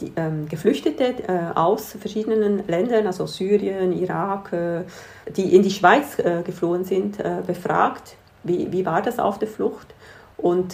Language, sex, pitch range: German, female, 170-205 Hz